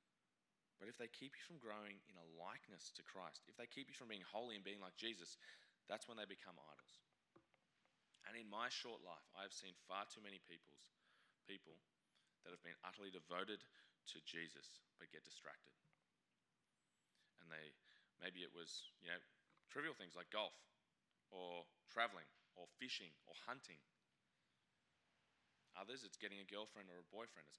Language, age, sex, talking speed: English, 20-39, male, 165 wpm